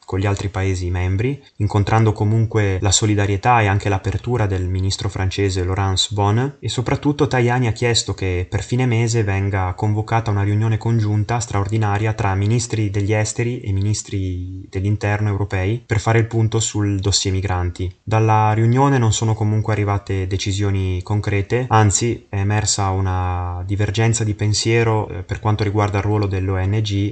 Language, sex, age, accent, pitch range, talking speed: Italian, male, 20-39, native, 95-110 Hz, 150 wpm